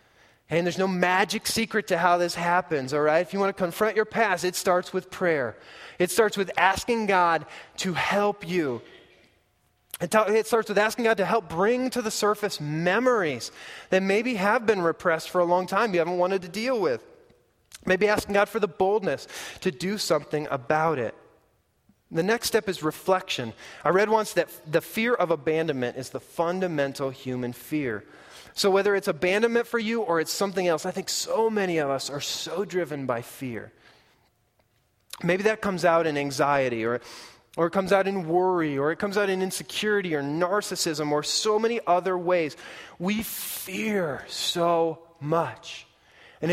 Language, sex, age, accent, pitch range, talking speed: English, male, 20-39, American, 165-215 Hz, 180 wpm